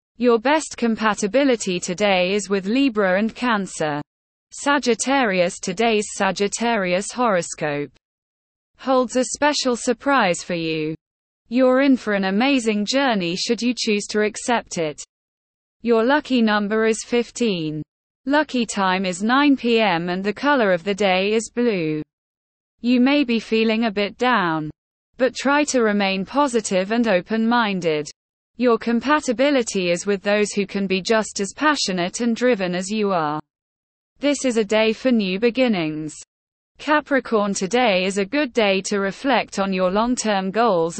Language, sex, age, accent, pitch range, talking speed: English, female, 20-39, British, 190-245 Hz, 145 wpm